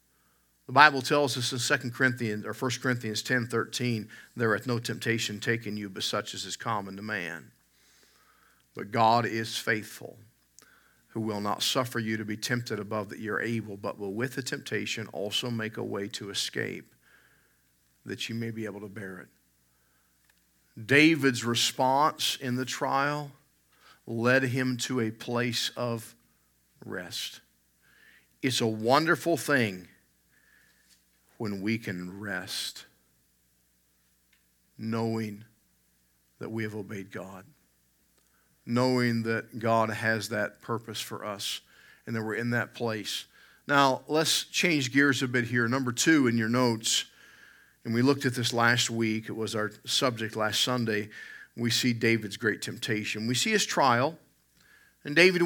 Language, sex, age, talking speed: English, male, 50-69, 145 wpm